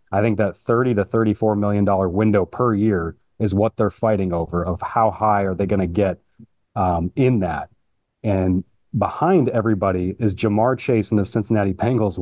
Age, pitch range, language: 30-49, 95-110 Hz, English